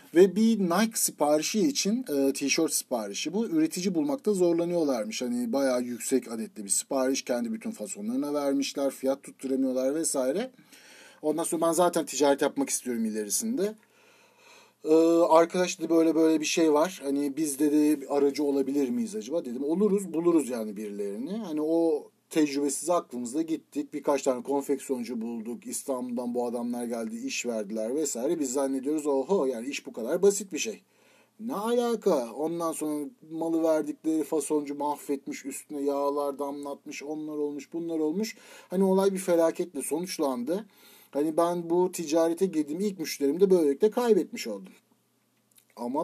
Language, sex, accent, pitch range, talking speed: Turkish, male, native, 130-175 Hz, 145 wpm